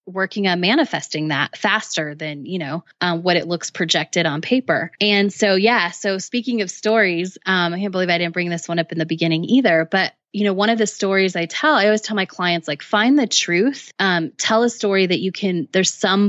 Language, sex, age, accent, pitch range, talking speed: English, female, 20-39, American, 170-210 Hz, 230 wpm